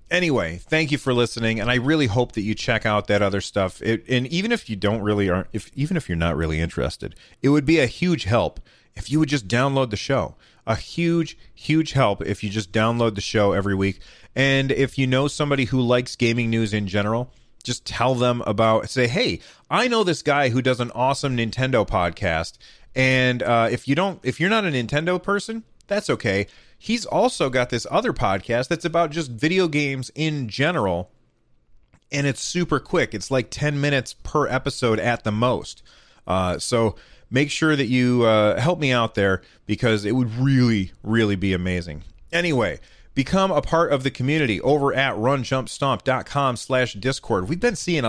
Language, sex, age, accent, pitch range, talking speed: English, male, 30-49, American, 110-145 Hz, 190 wpm